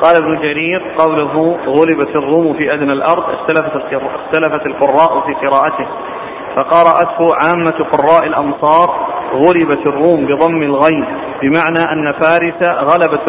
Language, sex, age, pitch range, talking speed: Arabic, male, 40-59, 155-175 Hz, 115 wpm